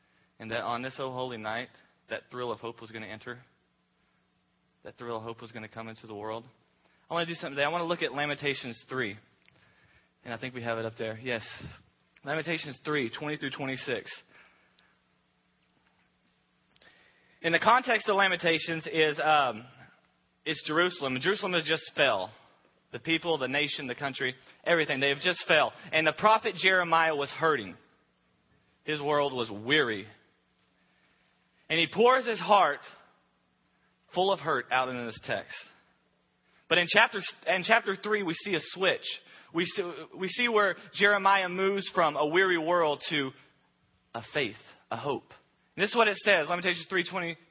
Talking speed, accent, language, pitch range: 170 wpm, American, English, 125-185 Hz